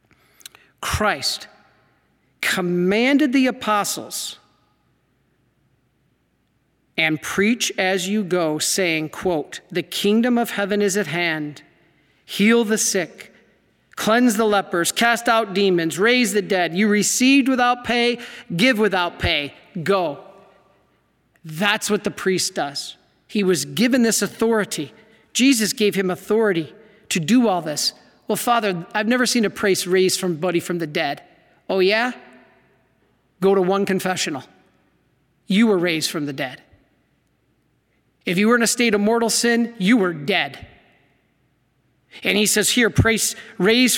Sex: male